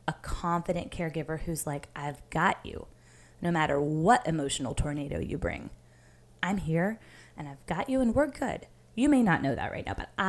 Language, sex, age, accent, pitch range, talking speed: English, female, 20-39, American, 155-190 Hz, 185 wpm